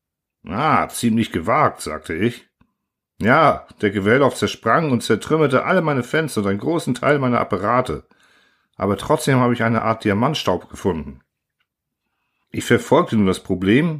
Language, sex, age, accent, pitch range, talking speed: German, male, 50-69, German, 105-130 Hz, 140 wpm